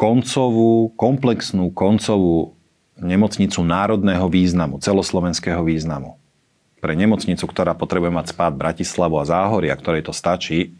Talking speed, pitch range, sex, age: 115 wpm, 80-90 Hz, male, 40-59